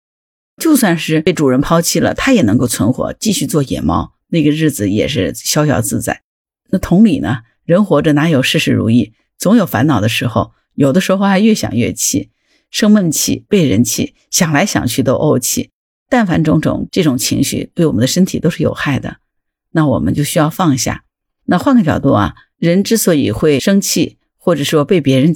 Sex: female